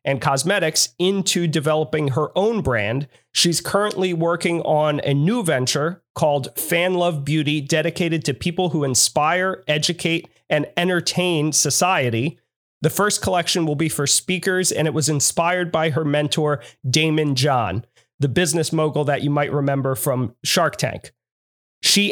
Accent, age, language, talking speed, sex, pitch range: American, 30-49, English, 145 wpm, male, 145-175 Hz